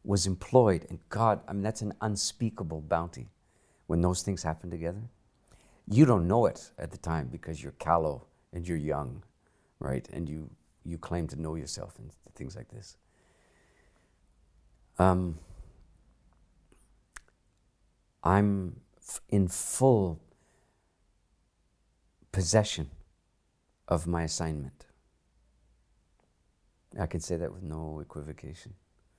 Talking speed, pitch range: 115 wpm, 80-100 Hz